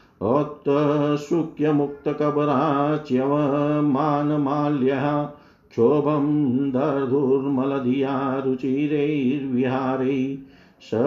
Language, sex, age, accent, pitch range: Hindi, male, 50-69, native, 135-145 Hz